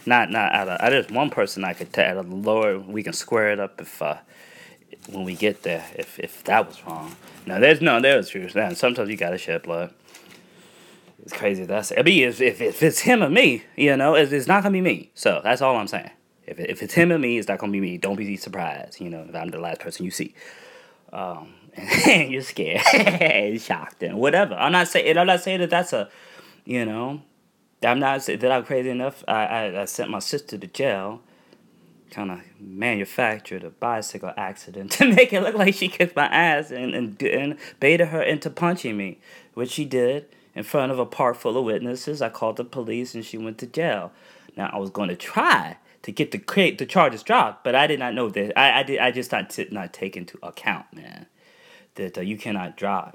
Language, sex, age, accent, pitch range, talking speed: English, male, 20-39, American, 105-160 Hz, 220 wpm